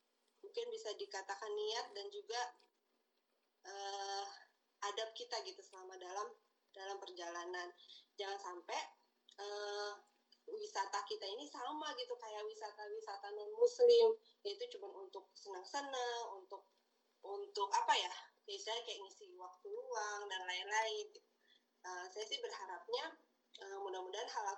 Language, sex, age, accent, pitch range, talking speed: Indonesian, female, 20-39, native, 195-305 Hz, 115 wpm